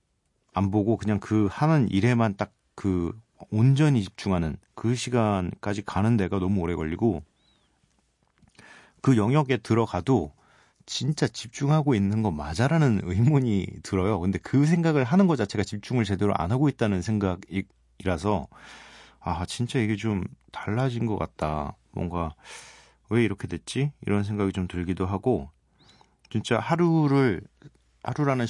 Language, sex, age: Korean, male, 40-59